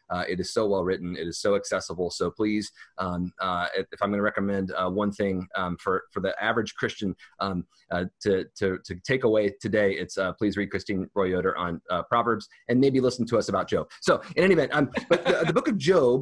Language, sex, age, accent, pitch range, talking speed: English, male, 30-49, American, 95-125 Hz, 235 wpm